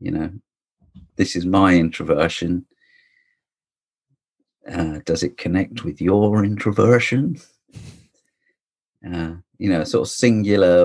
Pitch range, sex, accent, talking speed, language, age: 85-105 Hz, male, British, 105 wpm, English, 40-59